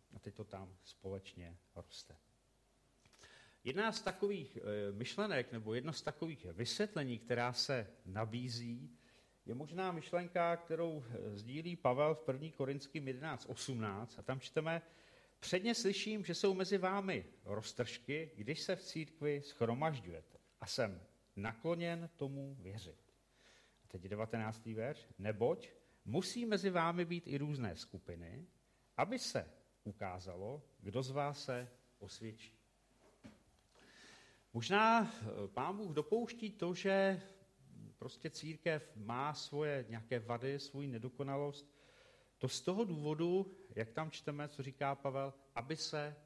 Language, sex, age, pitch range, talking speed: Czech, male, 50-69, 115-160 Hz, 125 wpm